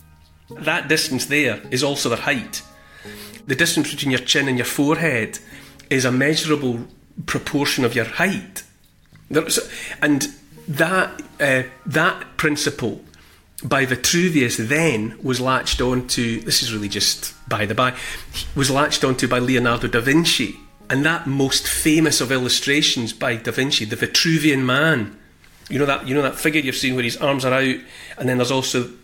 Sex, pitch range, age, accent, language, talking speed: male, 125-150 Hz, 40-59, British, English, 165 wpm